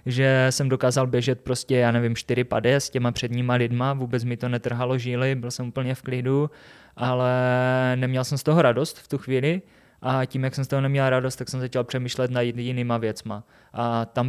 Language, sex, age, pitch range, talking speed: Czech, male, 20-39, 120-135 Hz, 205 wpm